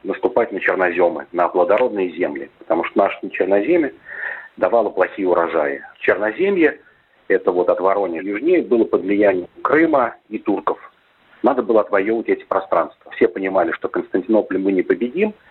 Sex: male